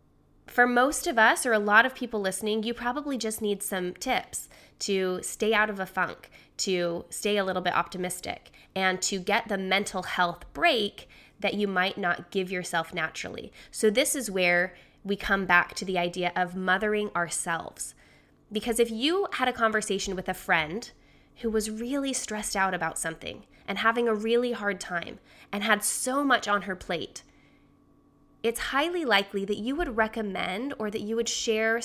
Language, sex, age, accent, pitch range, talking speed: English, female, 20-39, American, 185-235 Hz, 180 wpm